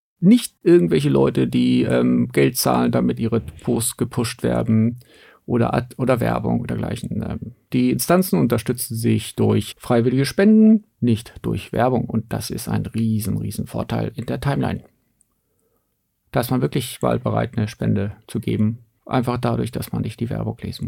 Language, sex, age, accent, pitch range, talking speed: German, male, 50-69, German, 110-130 Hz, 155 wpm